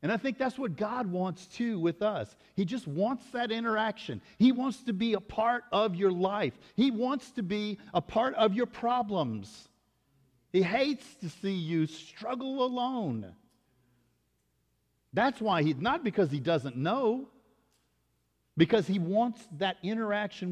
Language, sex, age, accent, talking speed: English, male, 50-69, American, 155 wpm